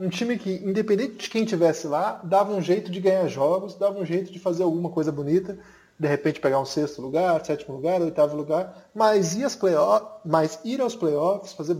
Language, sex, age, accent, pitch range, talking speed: Portuguese, male, 20-39, Brazilian, 145-210 Hz, 190 wpm